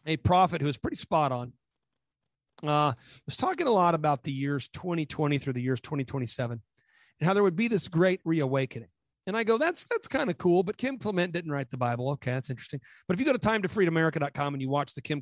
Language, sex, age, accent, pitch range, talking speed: English, male, 40-59, American, 140-190 Hz, 225 wpm